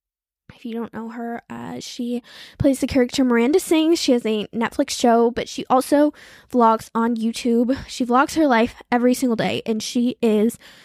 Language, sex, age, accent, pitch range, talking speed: English, female, 10-29, American, 225-260 Hz, 185 wpm